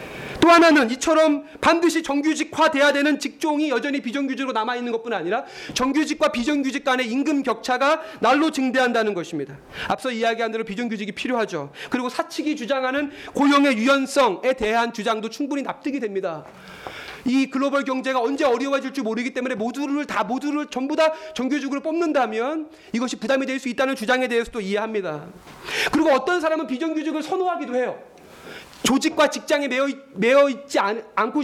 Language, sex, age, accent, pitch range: Korean, male, 30-49, native, 215-290 Hz